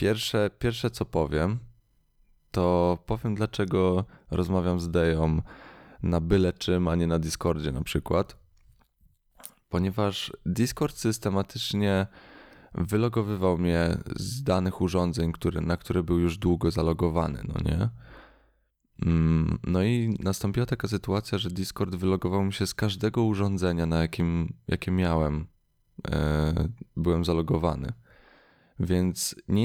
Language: Polish